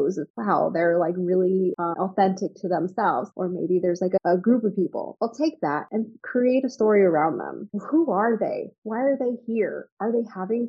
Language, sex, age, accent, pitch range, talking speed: English, female, 20-39, American, 180-225 Hz, 210 wpm